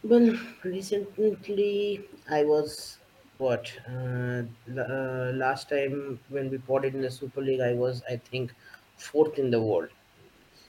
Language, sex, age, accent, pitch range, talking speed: English, male, 30-49, Indian, 120-145 Hz, 150 wpm